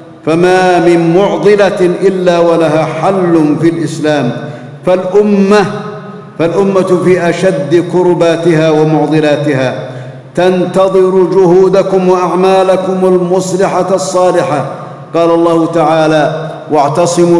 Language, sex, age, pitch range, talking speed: Arabic, male, 50-69, 150-170 Hz, 80 wpm